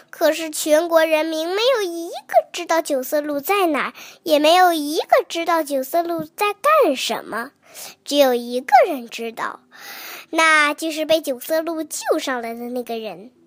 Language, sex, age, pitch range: Chinese, male, 10-29, 280-365 Hz